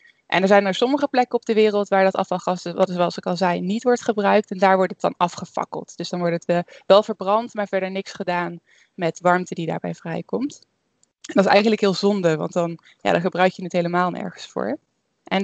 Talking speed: 220 wpm